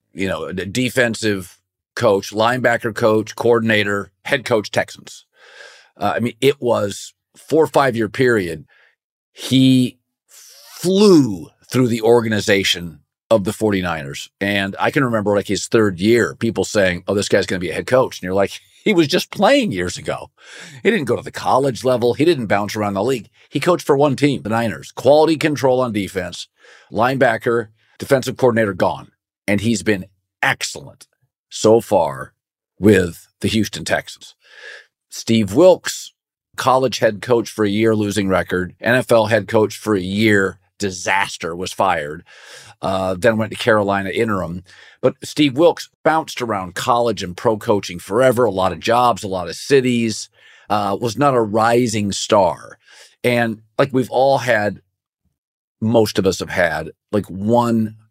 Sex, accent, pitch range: male, American, 100-125 Hz